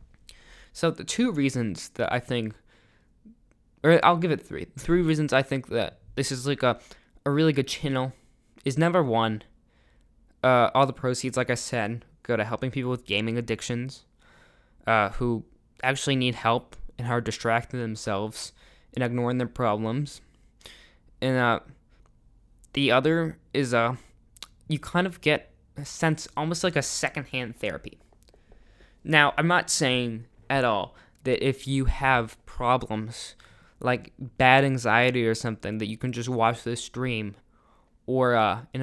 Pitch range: 115-140 Hz